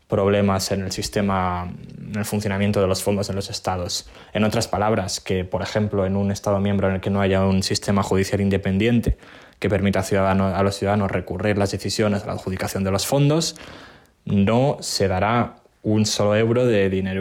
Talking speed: 190 wpm